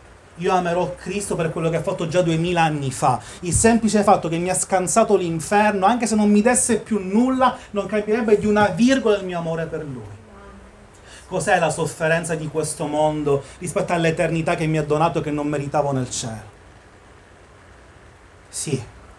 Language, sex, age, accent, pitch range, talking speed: Italian, male, 30-49, native, 120-195 Hz, 175 wpm